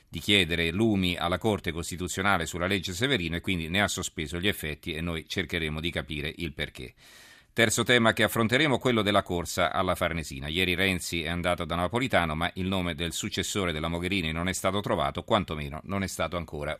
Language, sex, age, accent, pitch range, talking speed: Italian, male, 40-59, native, 85-100 Hz, 195 wpm